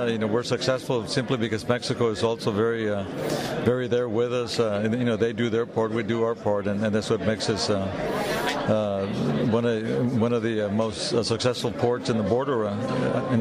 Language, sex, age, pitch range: English, male, 60-79, 110-125 Hz